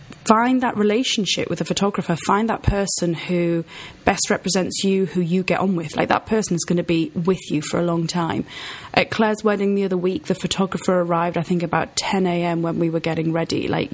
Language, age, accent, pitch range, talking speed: English, 30-49, British, 165-195 Hz, 220 wpm